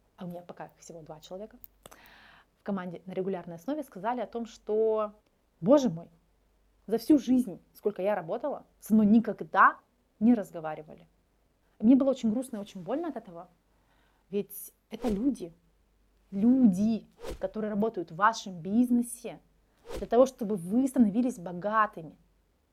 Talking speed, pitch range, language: 140 wpm, 200-245 Hz, Russian